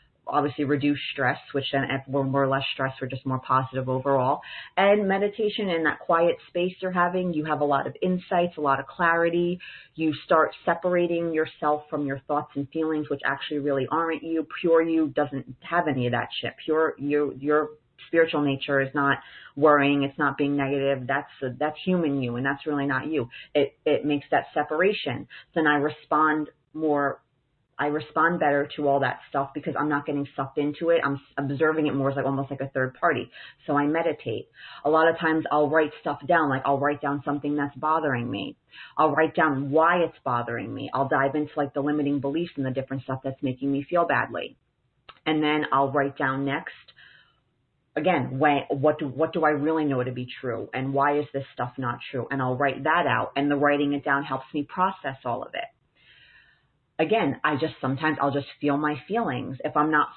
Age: 30-49